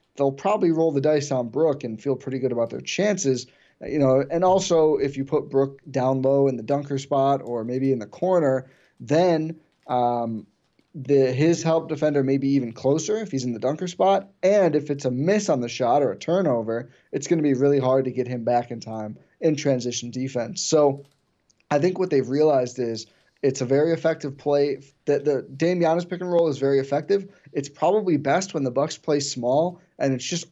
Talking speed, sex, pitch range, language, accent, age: 210 wpm, male, 130-155 Hz, English, American, 20-39